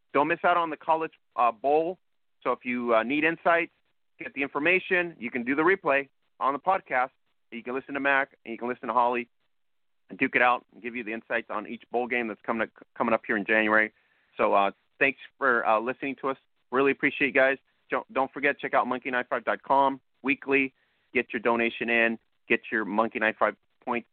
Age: 30-49